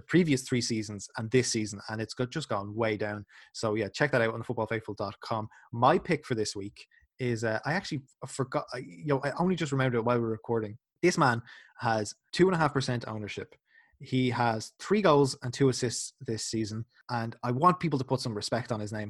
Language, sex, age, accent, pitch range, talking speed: English, male, 20-39, Irish, 110-140 Hz, 225 wpm